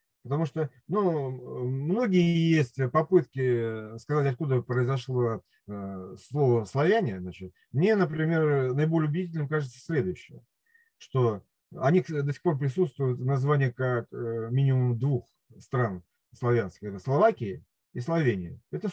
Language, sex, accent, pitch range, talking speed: Russian, male, native, 120-175 Hz, 110 wpm